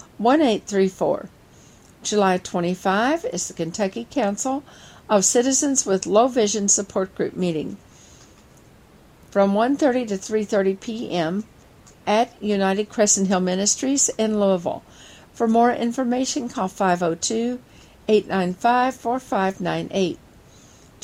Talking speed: 90 wpm